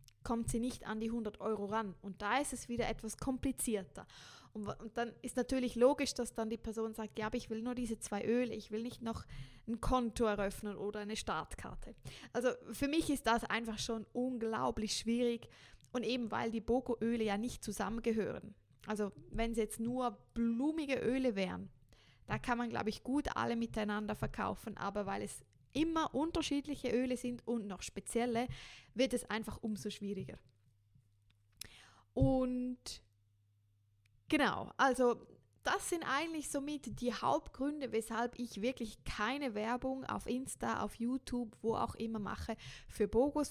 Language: German